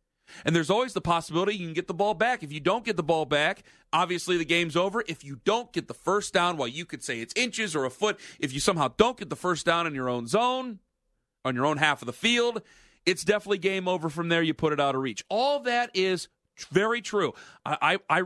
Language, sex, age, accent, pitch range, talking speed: English, male, 40-59, American, 155-195 Hz, 255 wpm